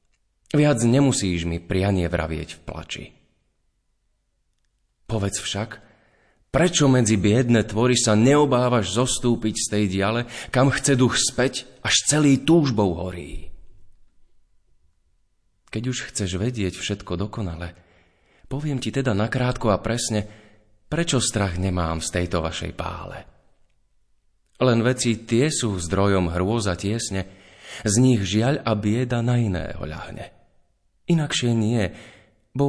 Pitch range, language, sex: 95-125 Hz, Slovak, male